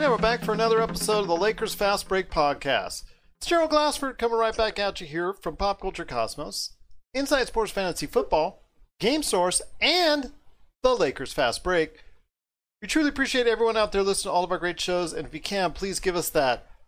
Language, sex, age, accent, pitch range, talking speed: English, male, 40-59, American, 170-225 Hz, 205 wpm